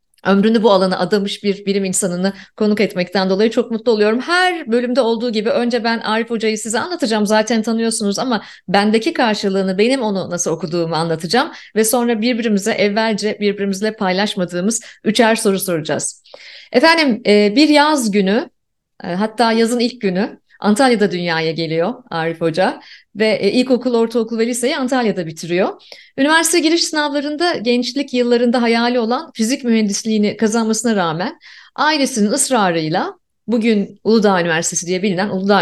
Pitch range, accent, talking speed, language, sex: 190-265 Hz, native, 135 wpm, Turkish, female